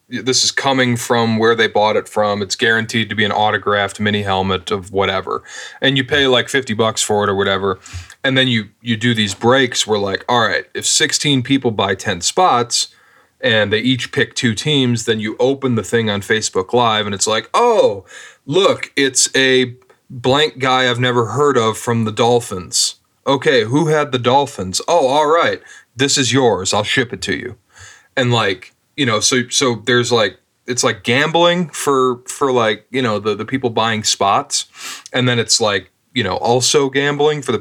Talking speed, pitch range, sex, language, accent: 195 wpm, 100-130 Hz, male, English, American